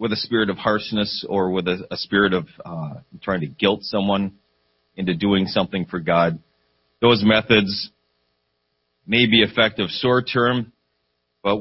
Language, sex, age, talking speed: English, male, 40-59, 145 wpm